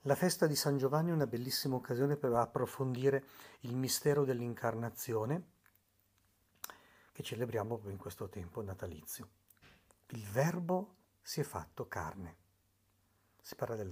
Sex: male